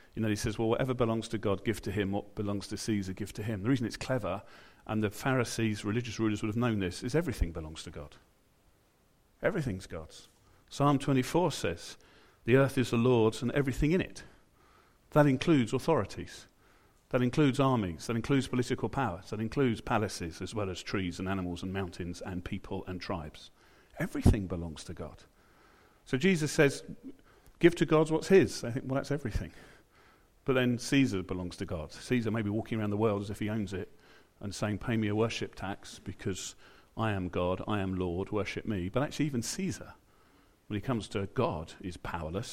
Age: 40-59